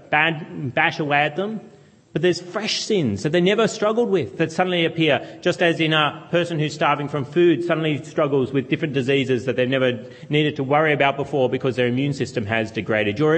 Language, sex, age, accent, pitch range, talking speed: English, male, 30-49, Australian, 130-170 Hz, 200 wpm